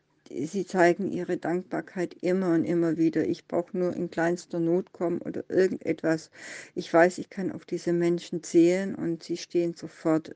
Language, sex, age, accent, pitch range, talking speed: German, female, 60-79, German, 165-185 Hz, 170 wpm